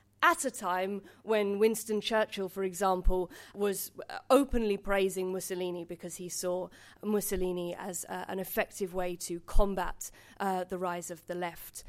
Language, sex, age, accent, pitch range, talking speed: English, female, 20-39, British, 185-230 Hz, 140 wpm